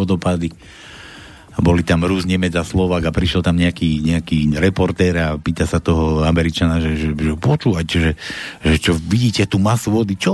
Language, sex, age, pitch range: Slovak, male, 60-79, 85-120 Hz